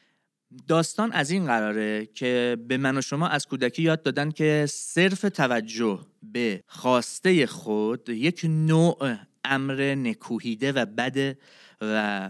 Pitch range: 115-165 Hz